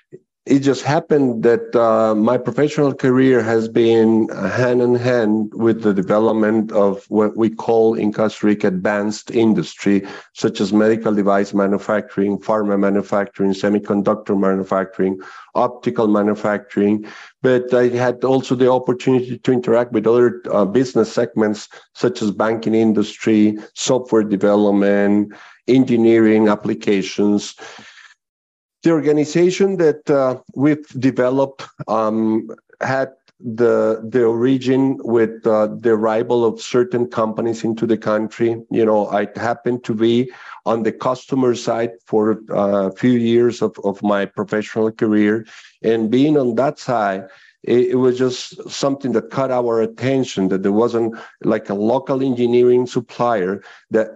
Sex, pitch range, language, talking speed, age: male, 105-125 Hz, English, 130 wpm, 50-69